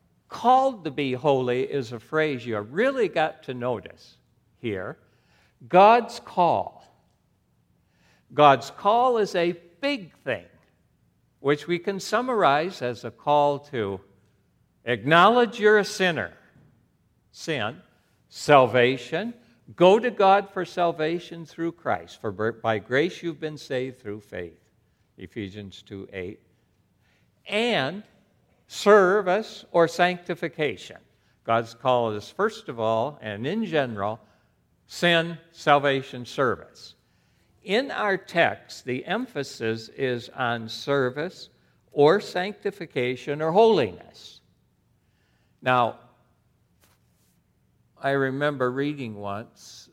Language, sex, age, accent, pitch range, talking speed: English, male, 60-79, American, 115-175 Hz, 105 wpm